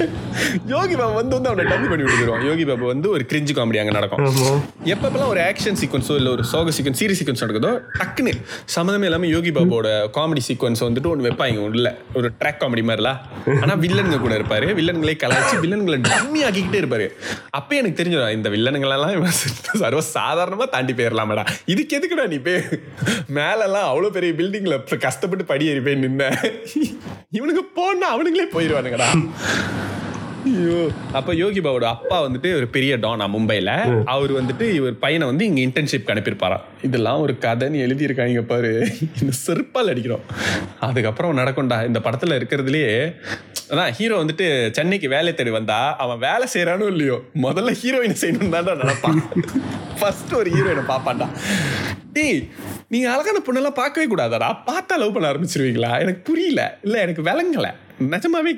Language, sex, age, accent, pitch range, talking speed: Tamil, male, 20-39, native, 120-190 Hz, 150 wpm